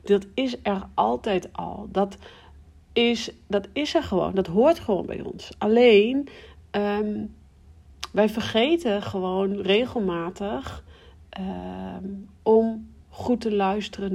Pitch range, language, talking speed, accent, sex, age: 190-220 Hz, Dutch, 100 wpm, Dutch, female, 40-59